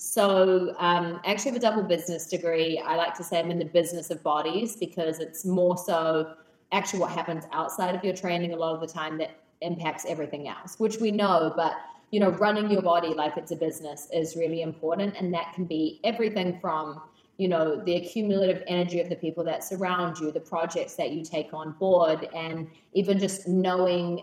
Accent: Australian